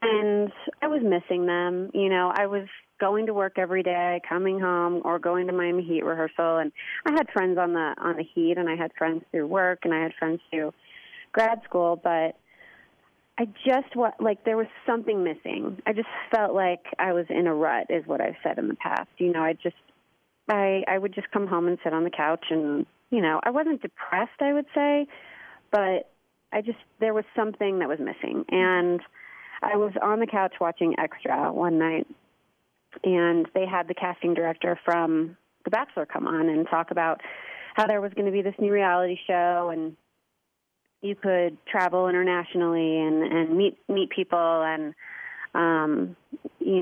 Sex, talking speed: female, 190 wpm